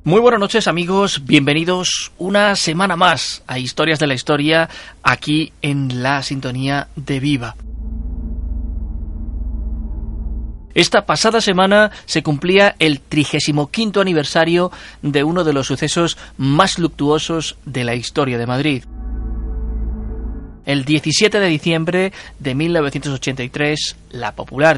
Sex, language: male, Spanish